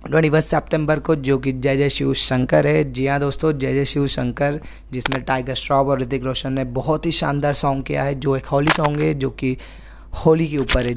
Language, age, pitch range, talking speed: Hindi, 20-39, 130-150 Hz, 230 wpm